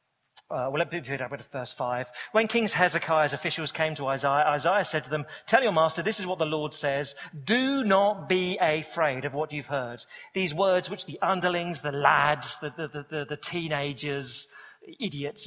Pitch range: 140-175 Hz